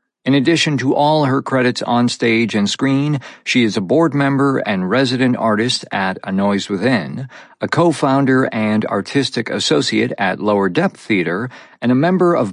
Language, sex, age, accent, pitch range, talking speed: English, male, 50-69, American, 115-155 Hz, 170 wpm